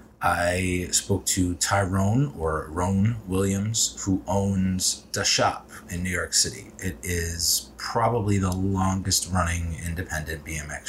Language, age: English, 30-49